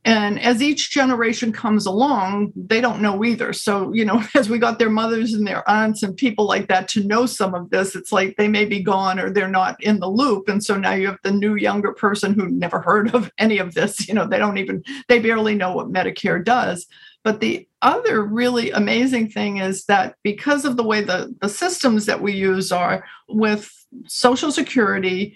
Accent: American